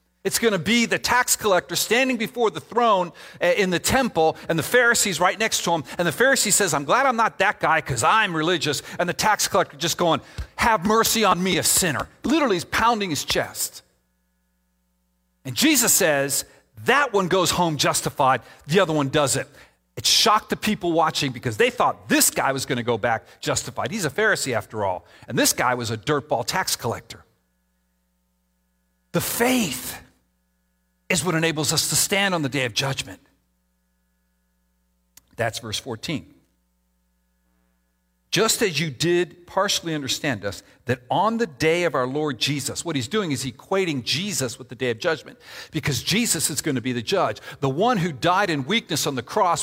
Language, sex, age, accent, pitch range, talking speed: English, male, 40-59, American, 125-205 Hz, 185 wpm